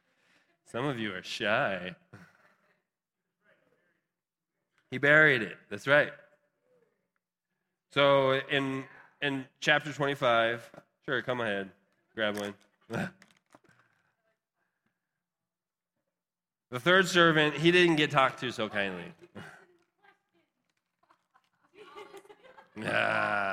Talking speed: 80 wpm